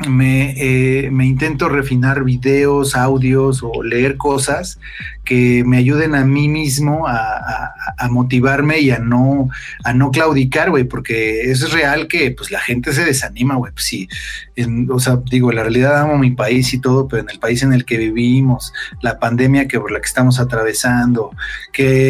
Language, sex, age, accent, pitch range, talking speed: Spanish, male, 40-59, Mexican, 125-140 Hz, 165 wpm